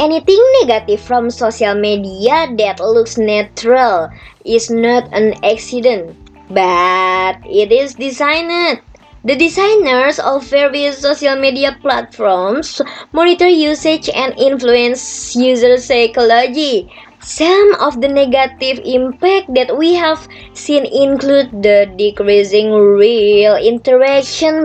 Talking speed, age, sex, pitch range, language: 105 wpm, 20-39, male, 210-280 Hz, English